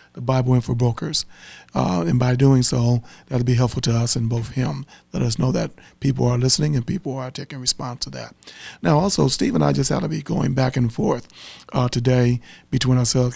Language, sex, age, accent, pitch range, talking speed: English, male, 40-59, American, 120-135 Hz, 220 wpm